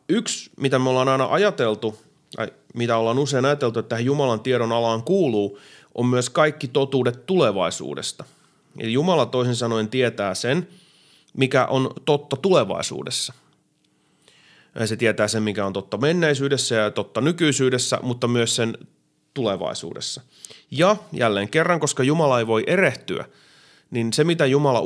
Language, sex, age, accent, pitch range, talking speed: Finnish, male, 30-49, native, 110-145 Hz, 140 wpm